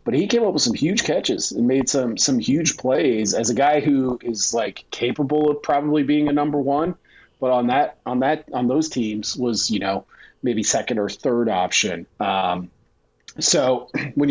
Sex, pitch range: male, 105-140 Hz